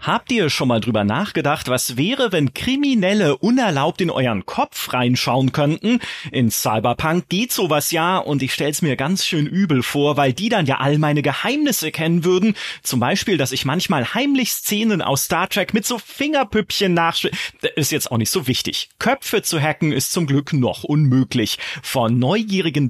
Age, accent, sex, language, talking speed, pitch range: 30-49, German, male, German, 180 wpm, 130-190 Hz